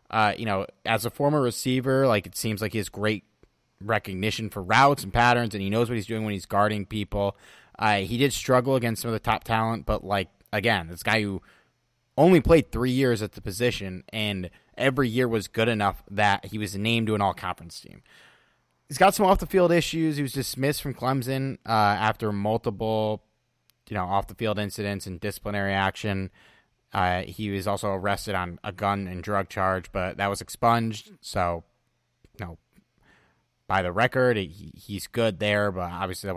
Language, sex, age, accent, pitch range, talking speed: English, male, 30-49, American, 100-120 Hz, 190 wpm